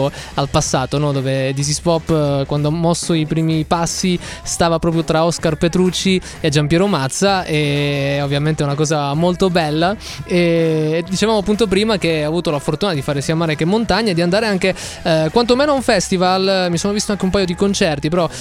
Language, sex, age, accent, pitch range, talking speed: Italian, male, 20-39, native, 155-185 Hz, 200 wpm